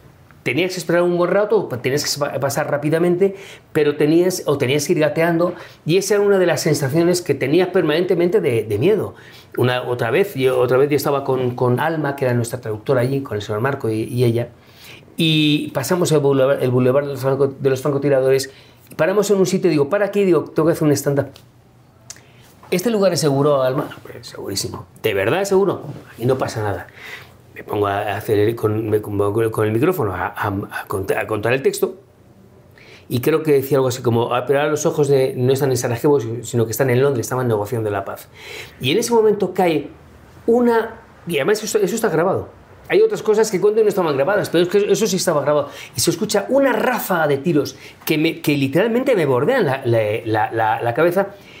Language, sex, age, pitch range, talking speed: Spanish, male, 40-59, 125-180 Hz, 210 wpm